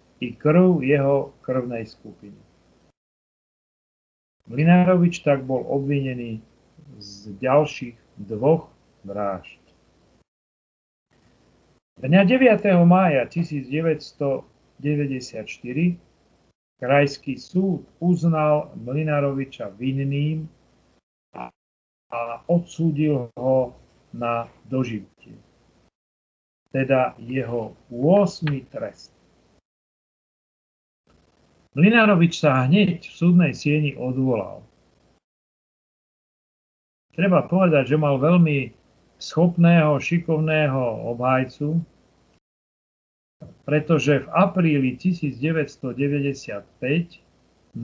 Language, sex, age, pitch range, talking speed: Slovak, male, 40-59, 125-165 Hz, 65 wpm